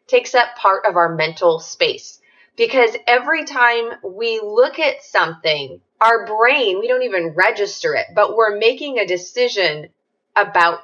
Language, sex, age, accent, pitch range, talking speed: English, female, 20-39, American, 180-250 Hz, 150 wpm